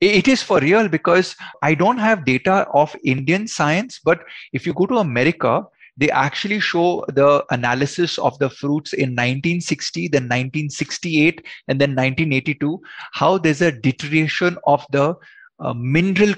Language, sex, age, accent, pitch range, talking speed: Hindi, male, 20-39, native, 135-180 Hz, 150 wpm